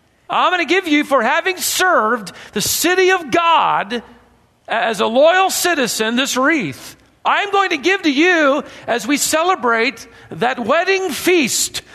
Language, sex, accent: English, male, American